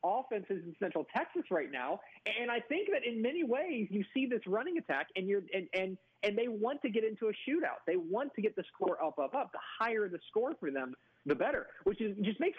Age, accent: 40-59, American